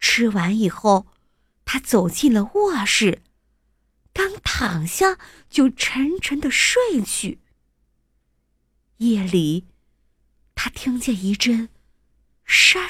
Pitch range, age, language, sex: 205-335 Hz, 50-69, Chinese, female